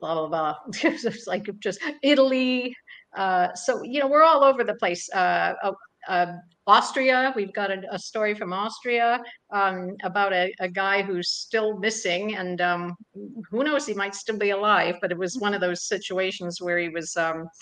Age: 50-69